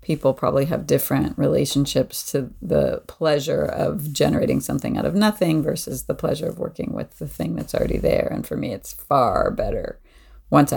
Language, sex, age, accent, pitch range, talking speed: English, female, 40-59, American, 140-175 Hz, 180 wpm